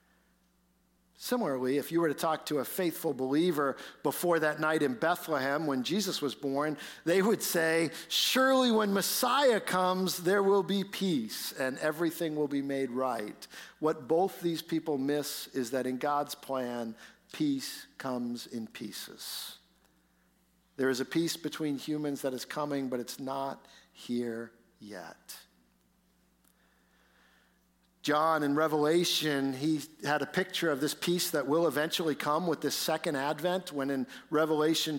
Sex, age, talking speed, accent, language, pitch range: male, 50-69, 145 wpm, American, English, 135-170 Hz